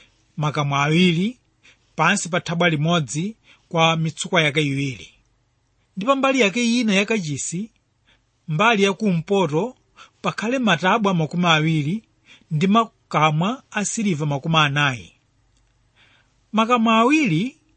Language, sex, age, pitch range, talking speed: English, male, 30-49, 145-210 Hz, 90 wpm